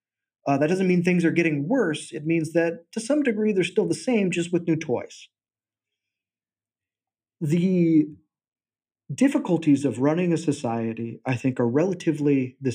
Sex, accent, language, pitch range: male, American, English, 120-170 Hz